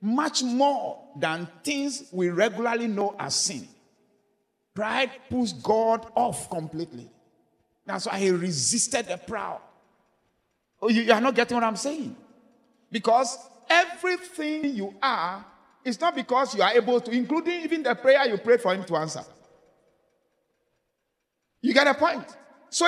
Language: English